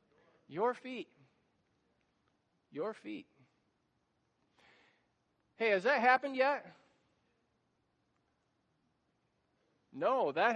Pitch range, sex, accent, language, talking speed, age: 210-265 Hz, male, American, English, 65 wpm, 40-59